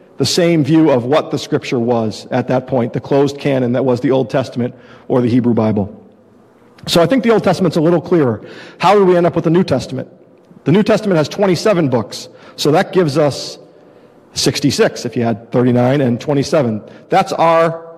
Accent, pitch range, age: American, 130-160 Hz, 50-69